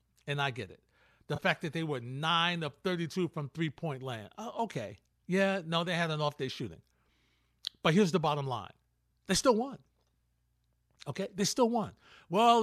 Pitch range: 120-190 Hz